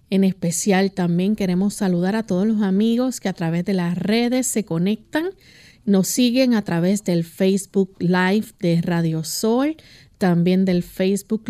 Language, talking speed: Spanish, 155 wpm